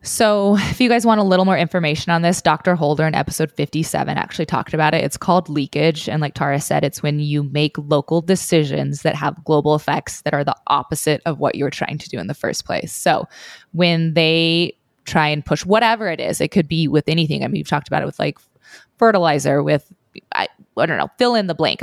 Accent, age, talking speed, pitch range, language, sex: American, 20-39, 230 wpm, 150-185 Hz, English, female